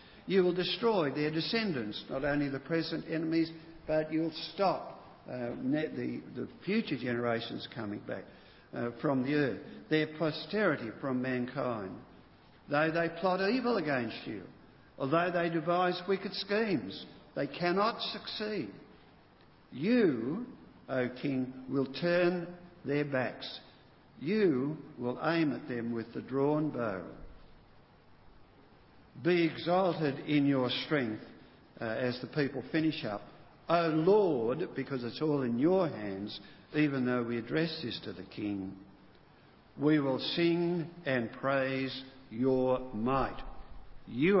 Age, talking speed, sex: 60-79, 125 wpm, male